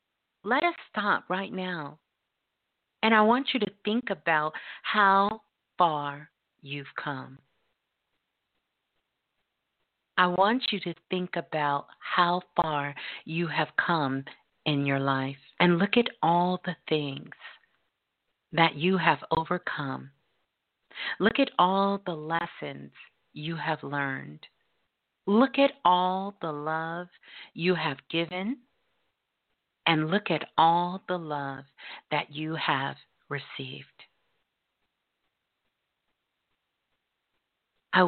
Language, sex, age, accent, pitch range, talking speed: English, female, 40-59, American, 150-195 Hz, 105 wpm